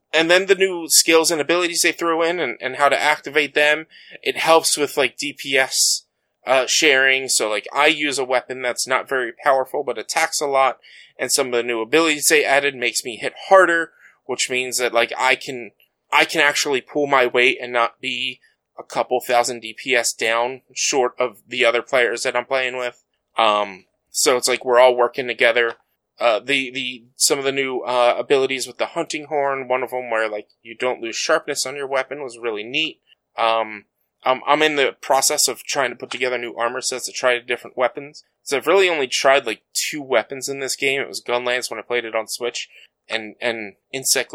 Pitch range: 120-145 Hz